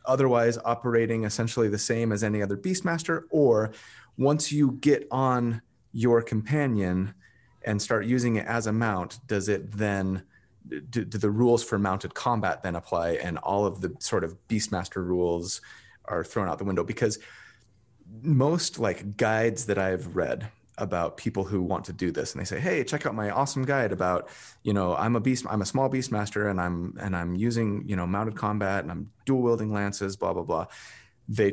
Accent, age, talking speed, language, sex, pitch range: American, 30-49, 190 wpm, English, male, 95-120 Hz